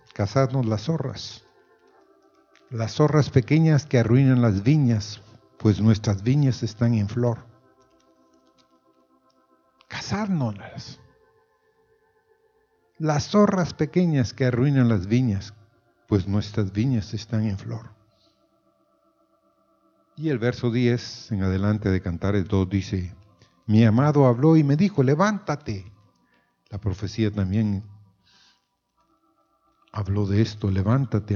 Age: 50-69